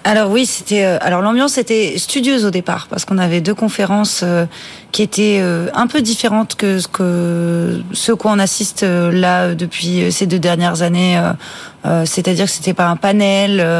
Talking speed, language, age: 165 wpm, French, 30-49